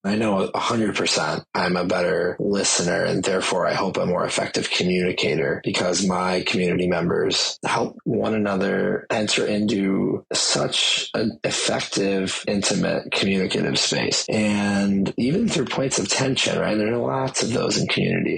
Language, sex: English, male